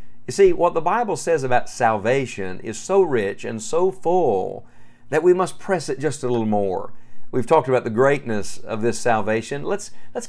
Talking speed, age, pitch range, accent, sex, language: 190 wpm, 50-69, 110-140 Hz, American, male, English